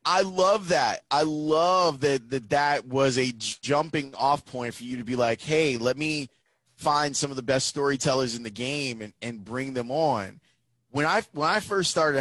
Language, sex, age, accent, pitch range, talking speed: English, male, 30-49, American, 120-150 Hz, 200 wpm